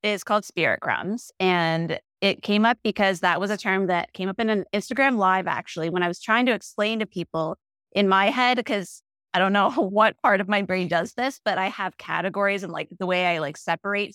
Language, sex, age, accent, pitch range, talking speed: English, female, 30-49, American, 180-215 Hz, 230 wpm